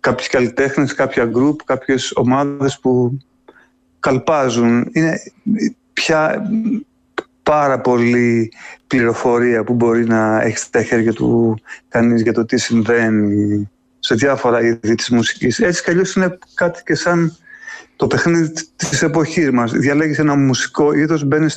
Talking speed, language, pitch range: 130 wpm, Greek, 125-160 Hz